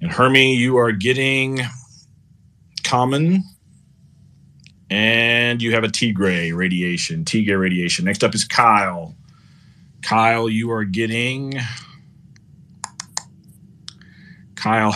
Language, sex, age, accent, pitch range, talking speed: English, male, 30-49, American, 105-135 Hz, 90 wpm